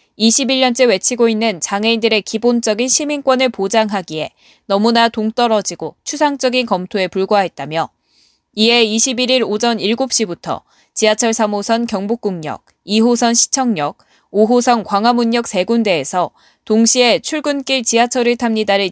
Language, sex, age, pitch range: Korean, female, 20-39, 200-240 Hz